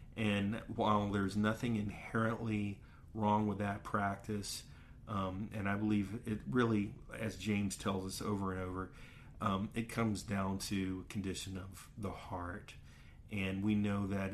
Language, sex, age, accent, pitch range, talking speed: English, male, 40-59, American, 95-110 Hz, 150 wpm